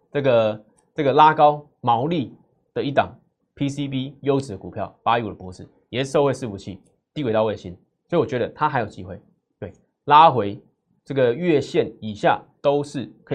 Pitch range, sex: 110-155 Hz, male